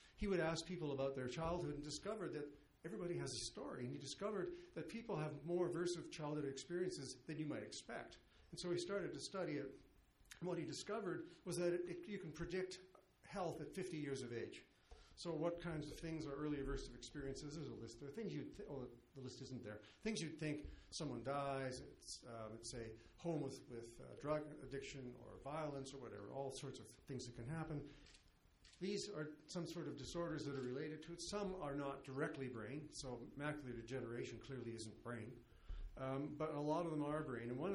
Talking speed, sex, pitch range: 210 wpm, male, 130-165 Hz